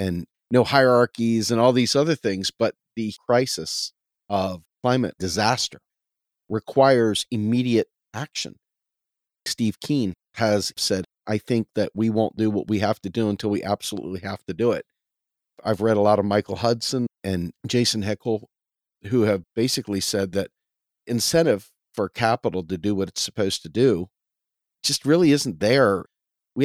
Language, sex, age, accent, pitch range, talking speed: English, male, 40-59, American, 95-120 Hz, 155 wpm